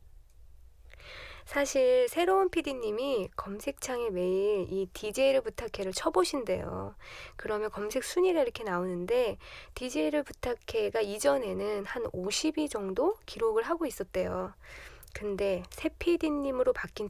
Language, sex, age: Korean, female, 20-39